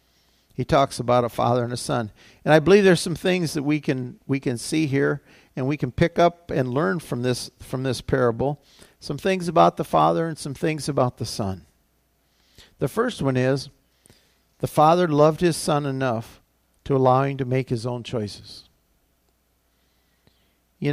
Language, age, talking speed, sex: English, 50-69, 180 wpm, male